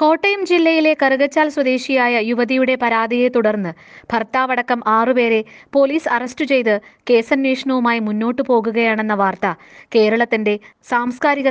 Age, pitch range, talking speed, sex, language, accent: 20-39, 225-275 Hz, 100 wpm, female, Malayalam, native